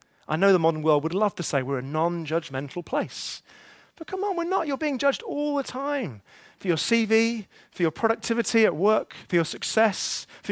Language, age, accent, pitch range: English, 30-49, British, 160-225 Hz